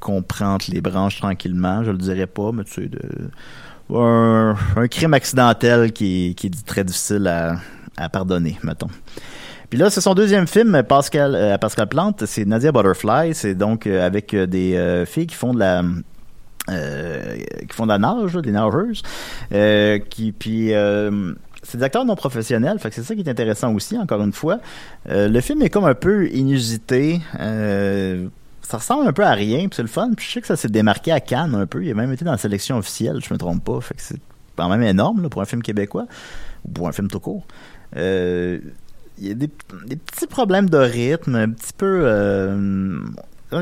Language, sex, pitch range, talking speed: French, male, 100-150 Hz, 205 wpm